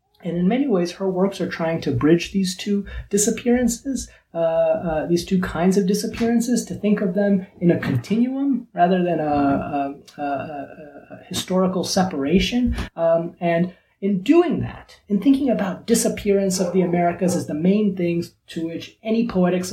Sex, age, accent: male, 30-49, American